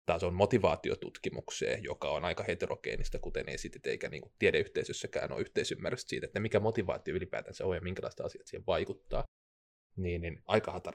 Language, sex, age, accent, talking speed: Finnish, male, 20-39, native, 155 wpm